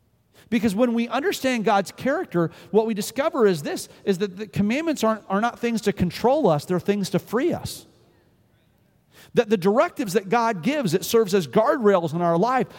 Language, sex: English, male